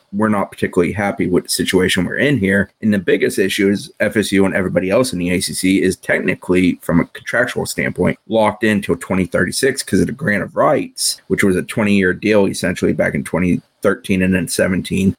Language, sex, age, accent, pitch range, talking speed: English, male, 30-49, American, 95-105 Hz, 200 wpm